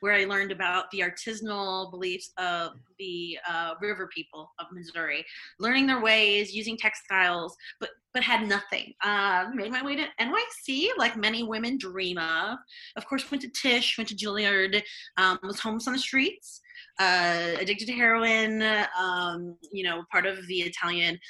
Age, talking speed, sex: 30-49, 165 wpm, female